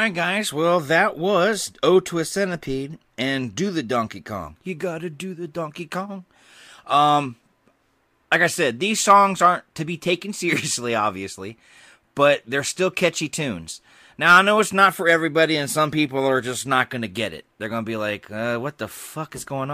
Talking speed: 200 wpm